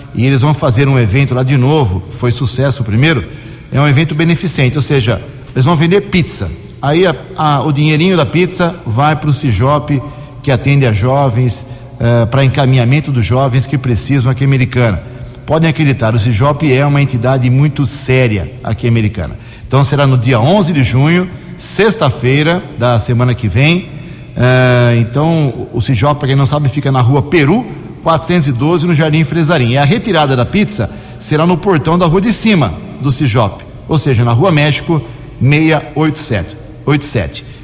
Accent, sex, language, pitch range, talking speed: Brazilian, male, Portuguese, 120-150 Hz, 175 wpm